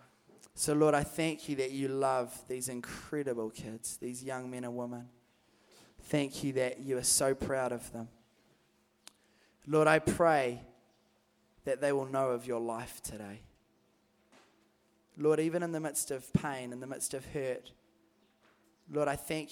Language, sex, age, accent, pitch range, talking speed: English, male, 20-39, Australian, 120-150 Hz, 155 wpm